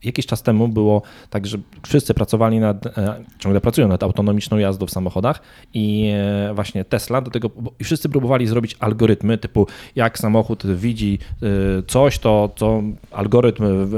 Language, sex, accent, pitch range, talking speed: Polish, male, native, 105-125 Hz, 145 wpm